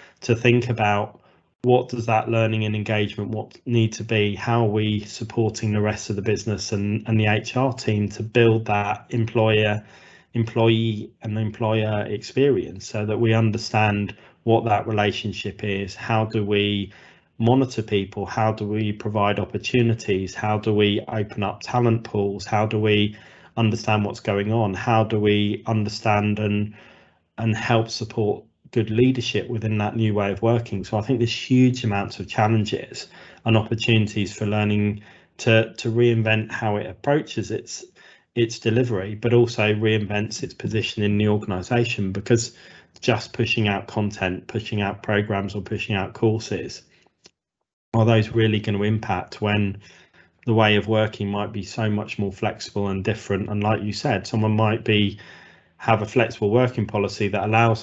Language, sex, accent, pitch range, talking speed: English, male, British, 105-115 Hz, 165 wpm